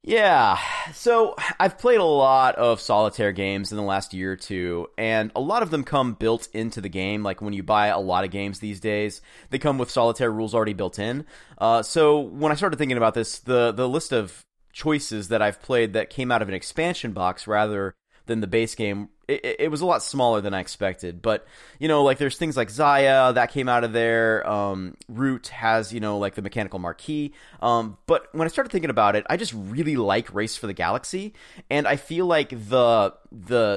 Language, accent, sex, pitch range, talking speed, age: English, American, male, 105-135 Hz, 220 wpm, 30-49